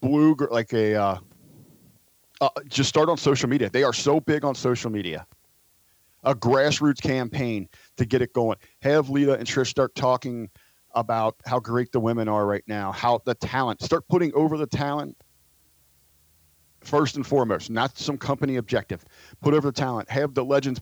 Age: 40-59